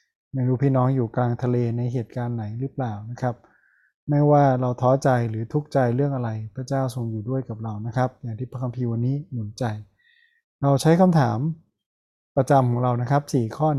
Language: Thai